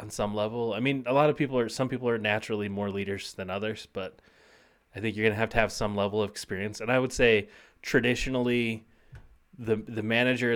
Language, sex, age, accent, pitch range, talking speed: English, male, 30-49, American, 100-120 Hz, 220 wpm